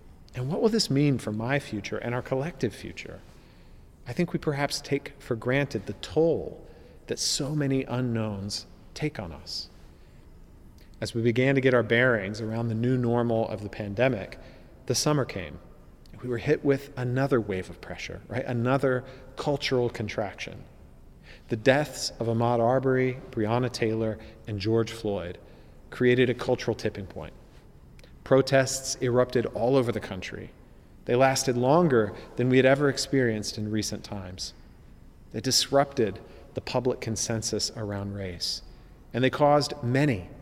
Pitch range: 105-135 Hz